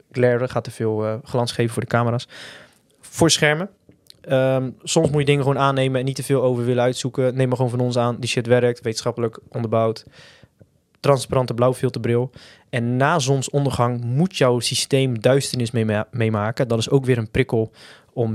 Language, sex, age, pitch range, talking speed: Dutch, male, 20-39, 115-130 Hz, 170 wpm